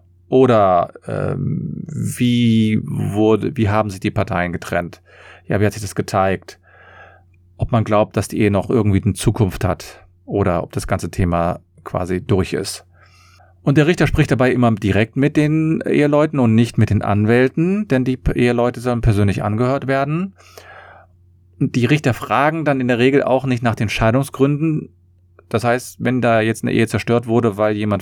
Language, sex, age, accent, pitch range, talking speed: German, male, 40-59, German, 95-125 Hz, 175 wpm